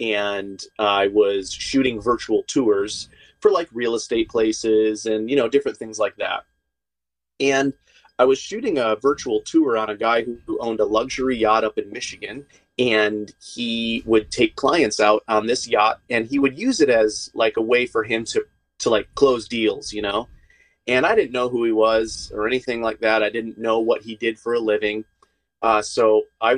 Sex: male